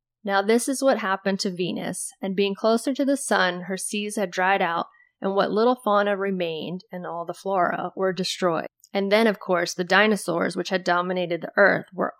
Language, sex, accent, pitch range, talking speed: English, female, American, 170-205 Hz, 200 wpm